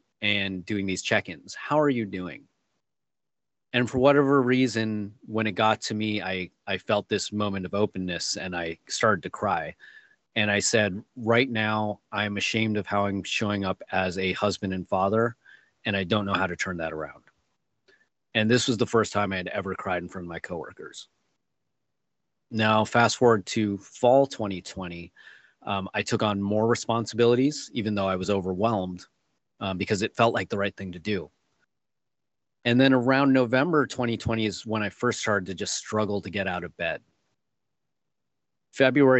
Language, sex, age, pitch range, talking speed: English, male, 30-49, 95-115 Hz, 180 wpm